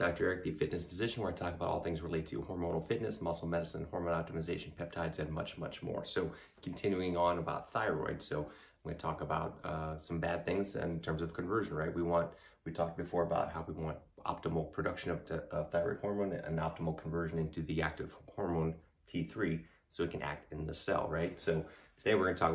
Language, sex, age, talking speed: English, male, 30-49, 210 wpm